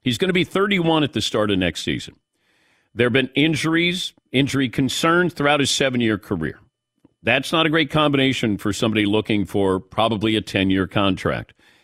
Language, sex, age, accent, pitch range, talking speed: English, male, 50-69, American, 105-150 Hz, 170 wpm